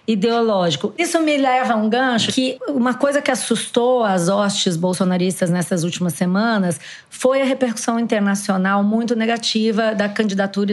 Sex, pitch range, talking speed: female, 195-235 Hz, 145 wpm